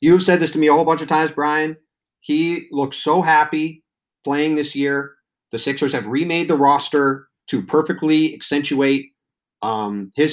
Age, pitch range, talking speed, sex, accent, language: 30-49, 125-150 Hz, 175 wpm, male, American, English